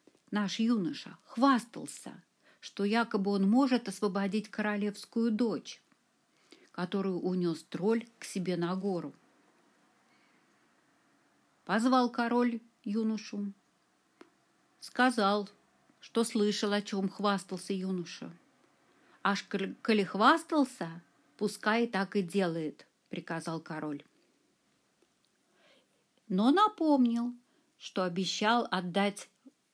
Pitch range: 180-245 Hz